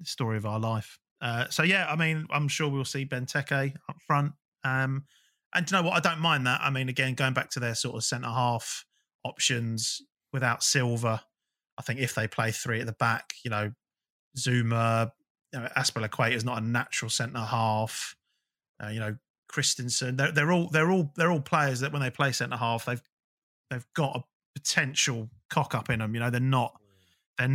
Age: 20-39